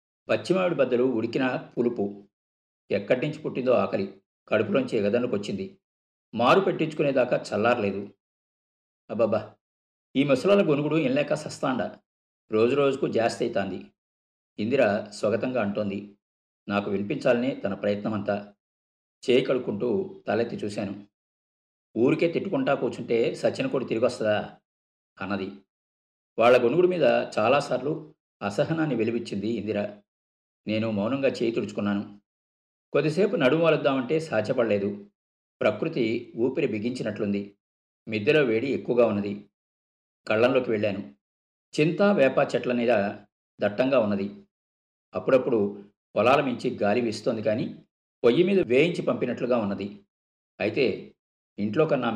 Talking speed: 90 wpm